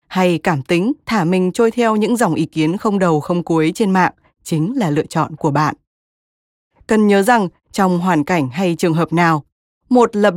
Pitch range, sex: 165-220 Hz, female